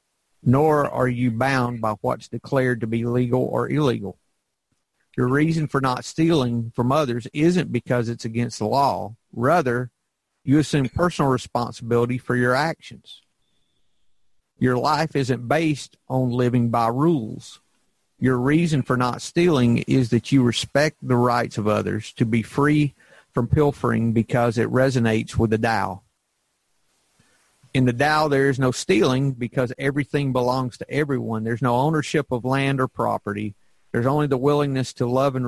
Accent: American